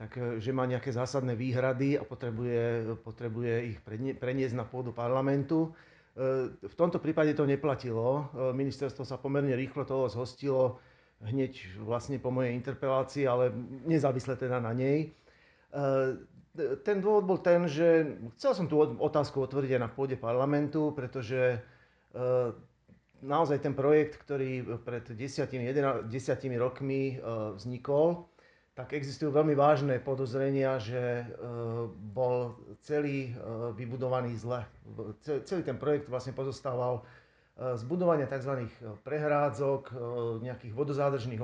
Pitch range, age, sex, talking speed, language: 120-145 Hz, 40-59, male, 115 wpm, Slovak